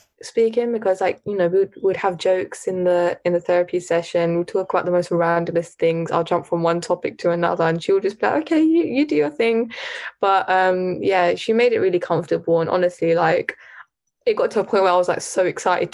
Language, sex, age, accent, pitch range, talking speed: English, female, 10-29, British, 175-195 Hz, 235 wpm